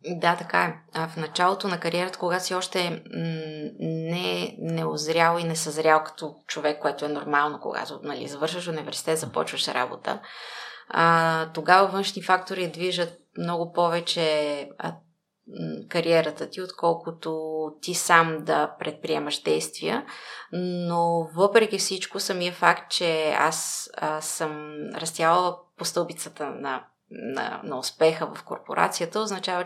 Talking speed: 120 wpm